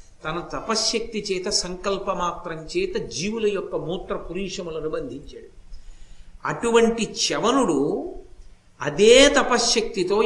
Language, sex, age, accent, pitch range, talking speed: Telugu, male, 50-69, native, 175-235 Hz, 80 wpm